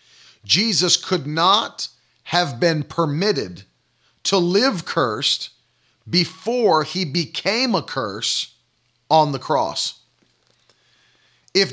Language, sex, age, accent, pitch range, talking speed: English, male, 40-59, American, 150-195 Hz, 90 wpm